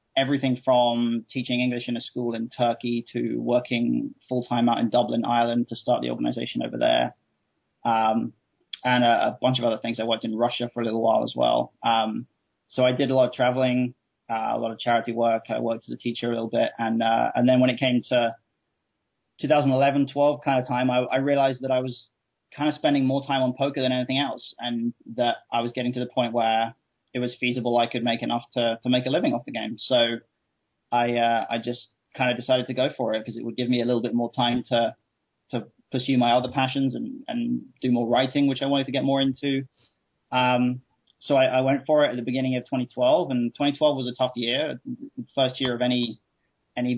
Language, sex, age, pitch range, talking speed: English, male, 20-39, 120-130 Hz, 230 wpm